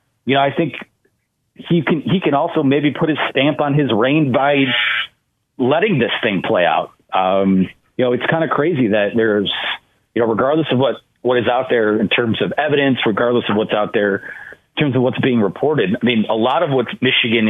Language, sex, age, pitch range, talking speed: English, male, 40-59, 110-155 Hz, 215 wpm